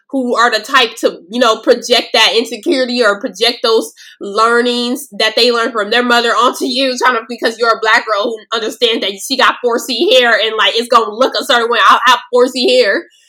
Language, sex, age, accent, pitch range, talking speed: English, female, 20-39, American, 235-320 Hz, 225 wpm